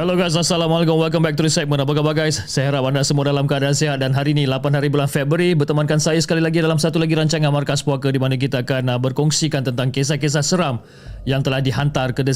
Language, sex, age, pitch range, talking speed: Malay, male, 30-49, 130-160 Hz, 235 wpm